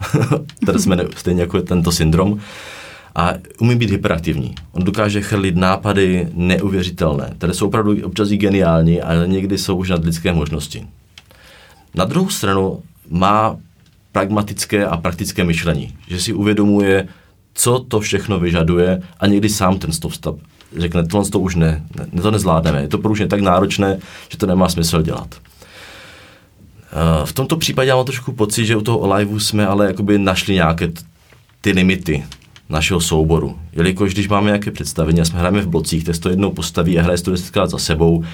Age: 30-49